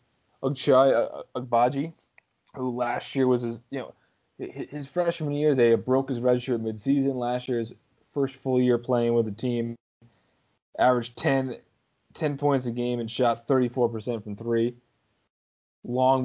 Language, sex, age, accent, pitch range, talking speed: English, male, 20-39, American, 115-130 Hz, 160 wpm